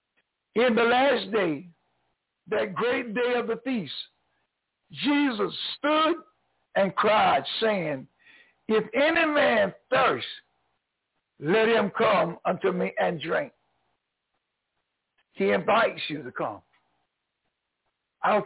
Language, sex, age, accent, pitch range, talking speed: English, male, 60-79, American, 190-270 Hz, 105 wpm